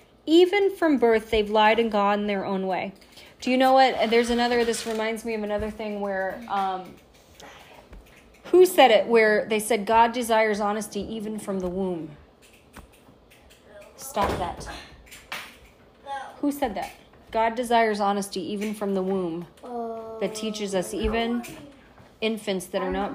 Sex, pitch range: female, 210-265 Hz